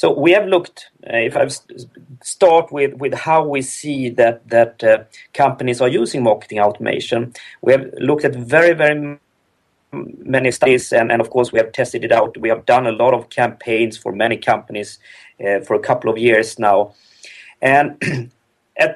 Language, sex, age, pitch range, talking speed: English, male, 40-59, 115-160 Hz, 180 wpm